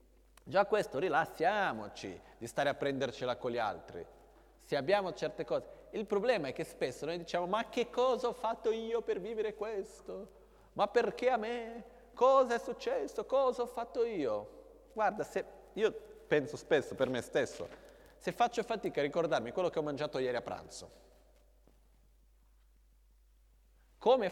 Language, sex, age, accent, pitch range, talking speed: Italian, male, 30-49, native, 135-220 Hz, 155 wpm